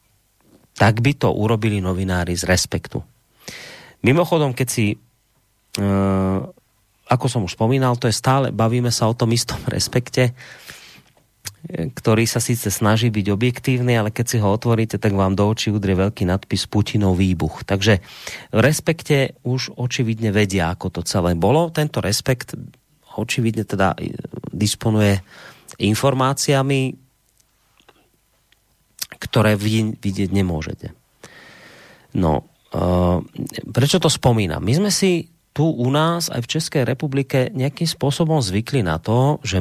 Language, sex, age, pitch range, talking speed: Slovak, male, 30-49, 100-130 Hz, 130 wpm